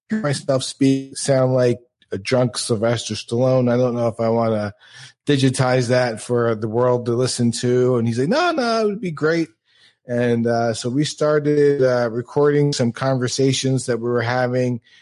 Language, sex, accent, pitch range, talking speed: English, male, American, 105-130 Hz, 180 wpm